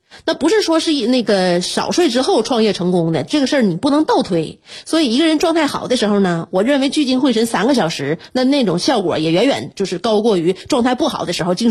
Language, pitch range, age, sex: Chinese, 185-260 Hz, 30-49, female